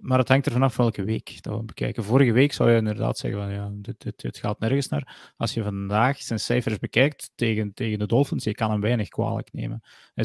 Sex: male